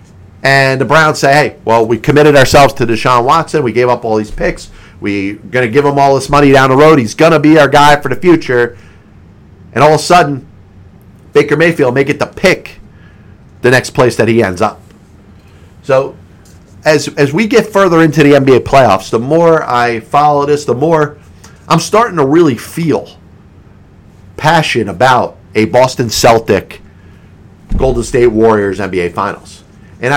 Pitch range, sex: 100-145 Hz, male